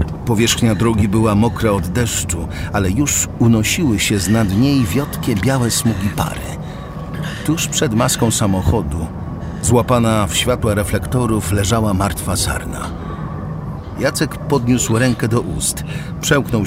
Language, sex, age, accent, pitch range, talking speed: Polish, male, 50-69, native, 90-130 Hz, 120 wpm